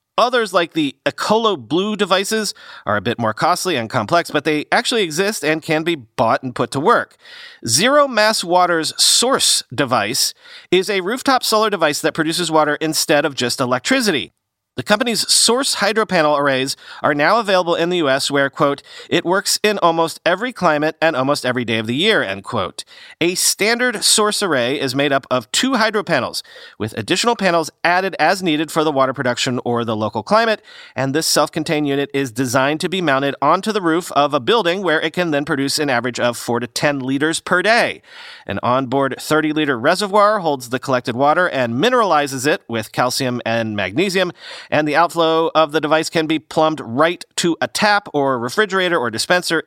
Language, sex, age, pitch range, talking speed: English, male, 40-59, 135-195 Hz, 185 wpm